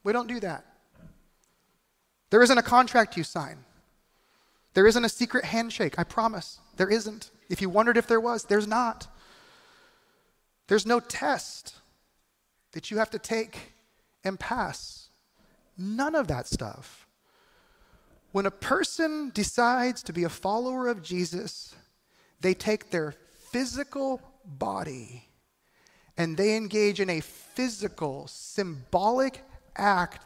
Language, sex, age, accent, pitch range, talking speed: English, male, 30-49, American, 155-230 Hz, 125 wpm